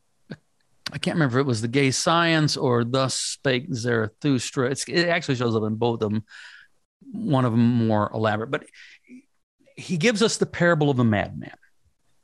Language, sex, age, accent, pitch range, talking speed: English, male, 50-69, American, 120-160 Hz, 170 wpm